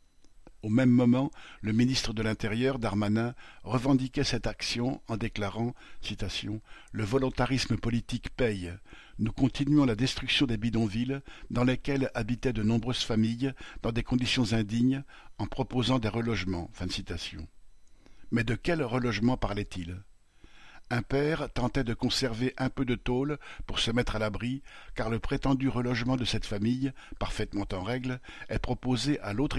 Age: 50-69